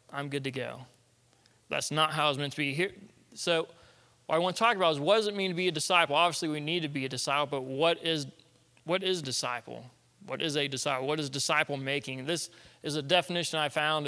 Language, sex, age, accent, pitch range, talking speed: English, male, 20-39, American, 140-190 Hz, 235 wpm